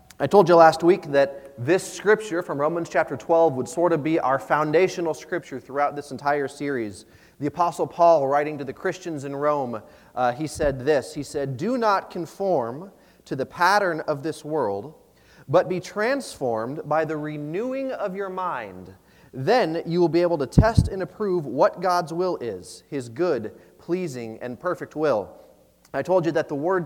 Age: 30-49